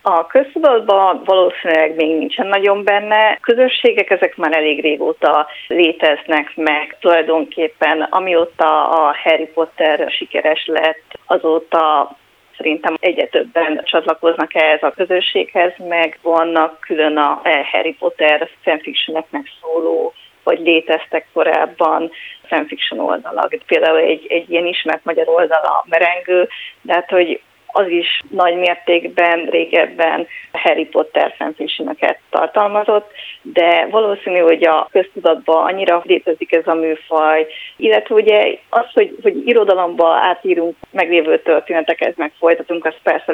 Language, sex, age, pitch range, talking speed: Hungarian, female, 30-49, 160-195 Hz, 120 wpm